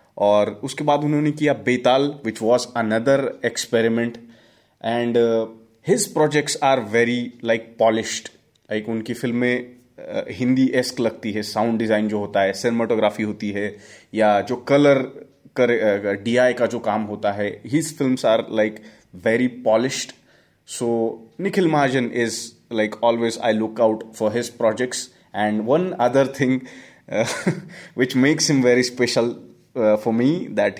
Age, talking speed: 30-49, 145 wpm